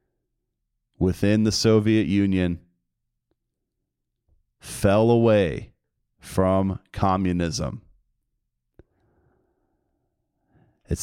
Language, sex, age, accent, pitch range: English, male, 30-49, American, 90-115 Hz